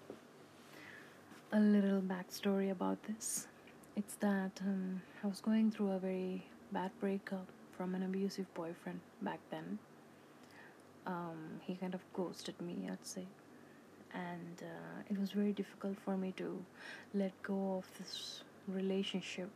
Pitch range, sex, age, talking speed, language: 185-200 Hz, female, 30-49, 135 wpm, English